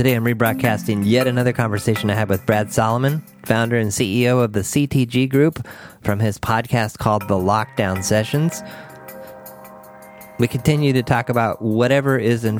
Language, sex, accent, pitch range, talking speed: English, male, American, 100-130 Hz, 155 wpm